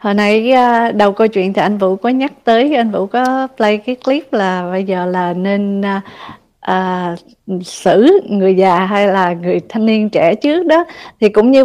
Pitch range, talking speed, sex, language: 195-250 Hz, 200 wpm, female, Vietnamese